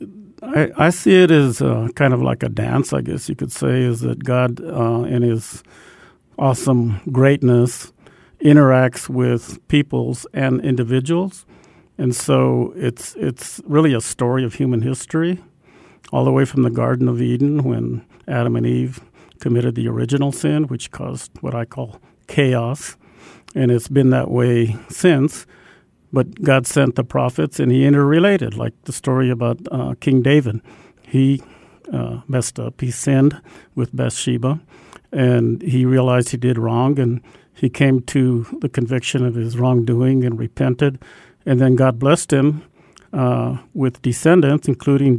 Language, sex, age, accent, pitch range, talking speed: English, male, 50-69, American, 120-140 Hz, 155 wpm